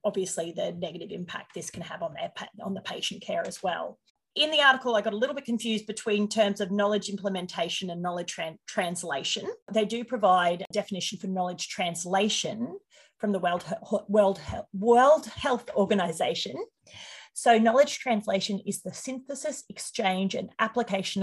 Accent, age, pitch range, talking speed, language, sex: Australian, 30-49, 180-220 Hz, 165 wpm, English, female